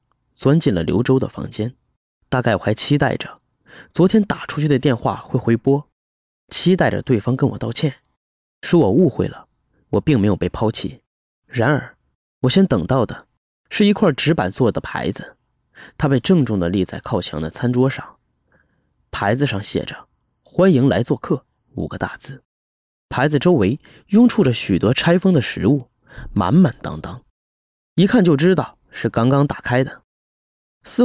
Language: Chinese